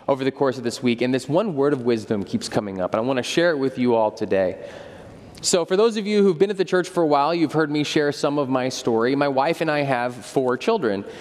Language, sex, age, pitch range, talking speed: English, male, 20-39, 120-155 Hz, 285 wpm